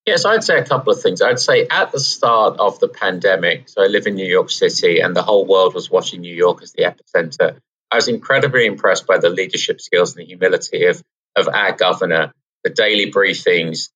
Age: 30-49